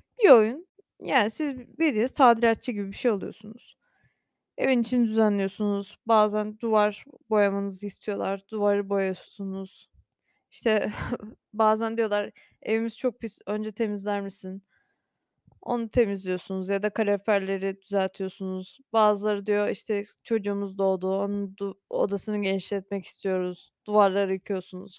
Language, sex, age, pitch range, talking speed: Turkish, female, 20-39, 200-275 Hz, 110 wpm